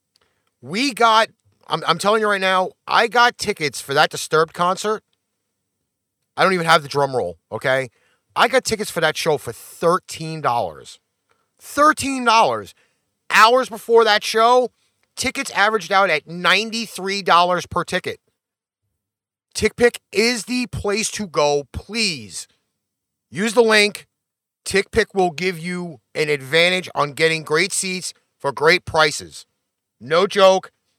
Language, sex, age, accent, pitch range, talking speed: English, male, 30-49, American, 155-215 Hz, 130 wpm